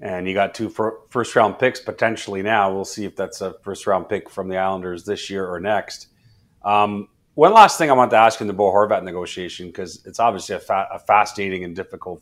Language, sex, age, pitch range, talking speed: English, male, 30-49, 95-115 Hz, 215 wpm